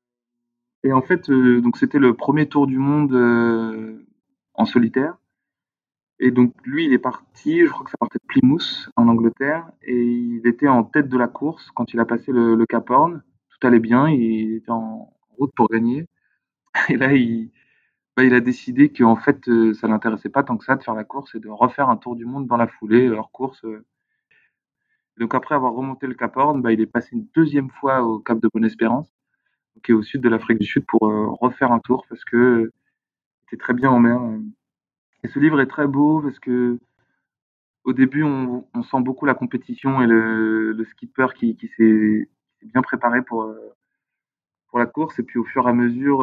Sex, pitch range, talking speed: male, 115-135 Hz, 210 wpm